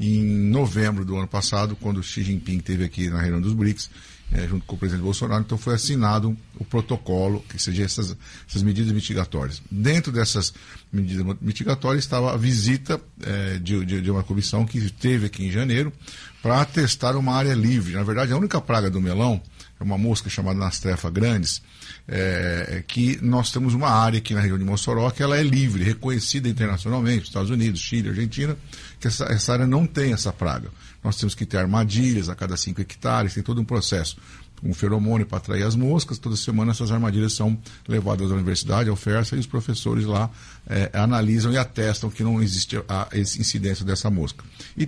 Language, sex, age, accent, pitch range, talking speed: Portuguese, male, 50-69, Brazilian, 100-125 Hz, 195 wpm